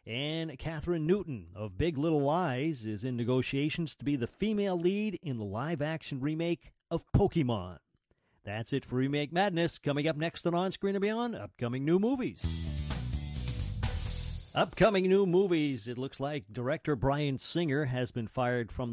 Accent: American